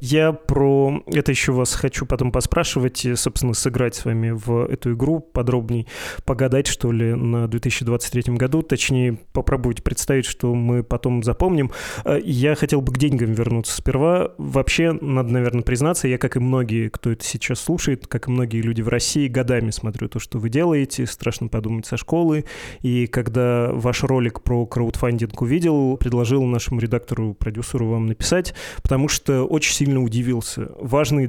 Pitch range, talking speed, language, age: 120-135 Hz, 155 wpm, Russian, 20-39